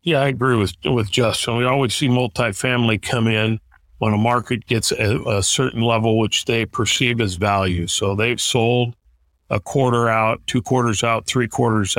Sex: male